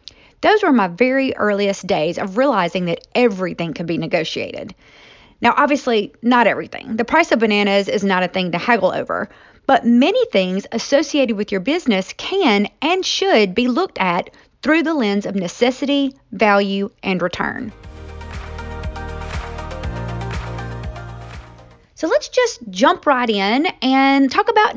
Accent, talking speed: American, 140 wpm